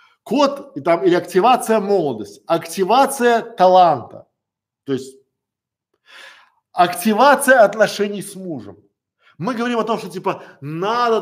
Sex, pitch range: male, 155-225 Hz